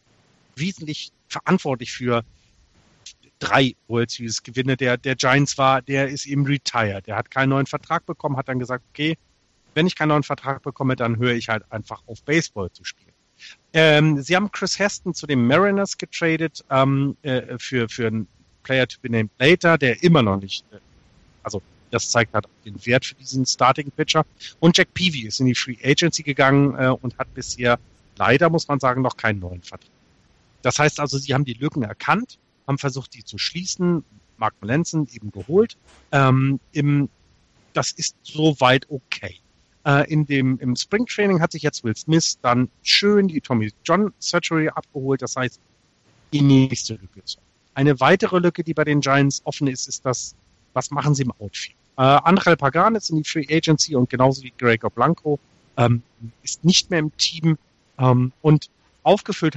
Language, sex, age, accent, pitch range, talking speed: German, male, 40-59, German, 120-155 Hz, 180 wpm